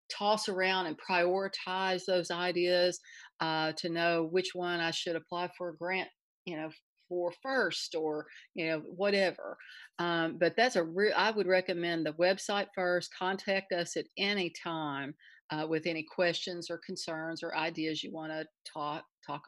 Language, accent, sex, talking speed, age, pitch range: English, American, female, 165 wpm, 40-59, 160-185 Hz